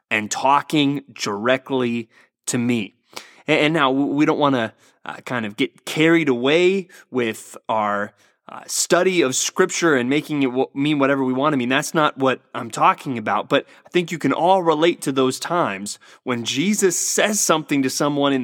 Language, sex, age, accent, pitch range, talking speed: English, male, 20-39, American, 115-155 Hz, 185 wpm